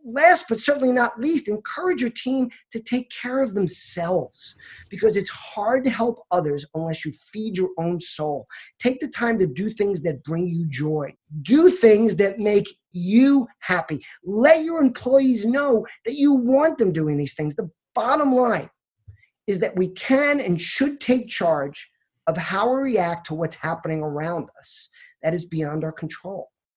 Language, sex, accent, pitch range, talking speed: English, male, American, 165-240 Hz, 175 wpm